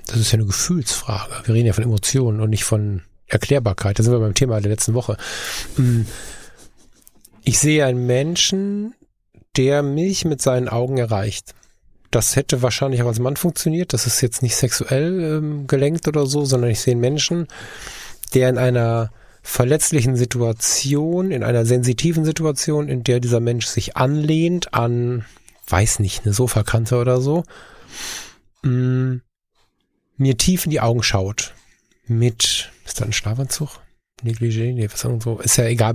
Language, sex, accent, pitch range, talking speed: German, male, German, 115-140 Hz, 155 wpm